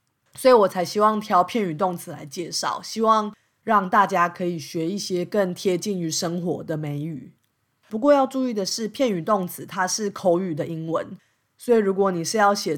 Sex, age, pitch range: female, 20-39, 160-205 Hz